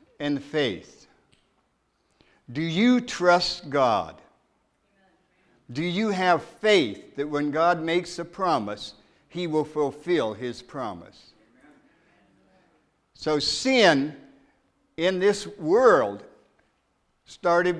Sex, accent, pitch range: male, American, 145-190 Hz